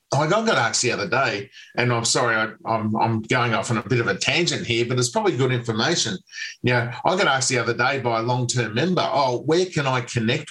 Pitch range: 120-150 Hz